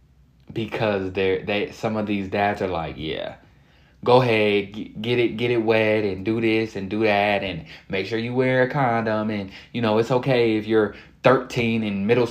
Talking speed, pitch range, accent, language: 195 wpm, 90-110 Hz, American, English